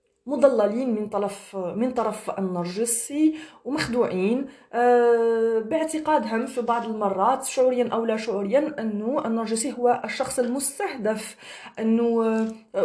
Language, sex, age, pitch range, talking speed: Arabic, female, 30-49, 195-250 Hz, 100 wpm